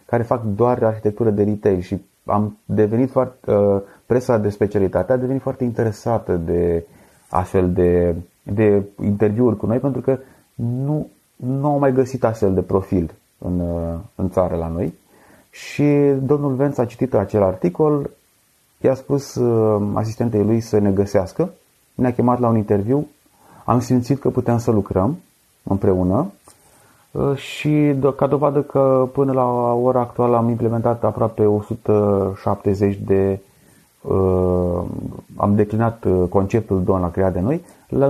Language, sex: Romanian, male